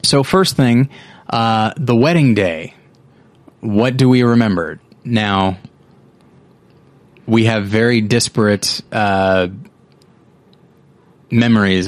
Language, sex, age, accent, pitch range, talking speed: English, male, 30-49, American, 95-115 Hz, 90 wpm